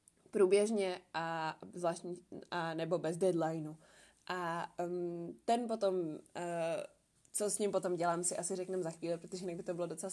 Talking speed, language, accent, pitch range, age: 160 wpm, Czech, native, 175-200 Hz, 20-39